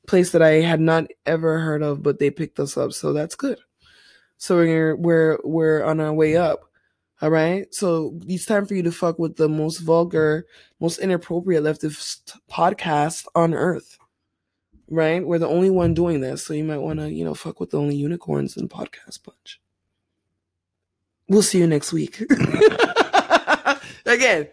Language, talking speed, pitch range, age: English, 175 wpm, 155-185 Hz, 20-39